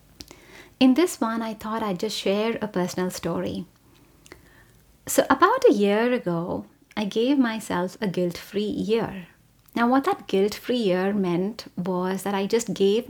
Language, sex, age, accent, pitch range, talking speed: English, female, 30-49, Indian, 190-235 Hz, 150 wpm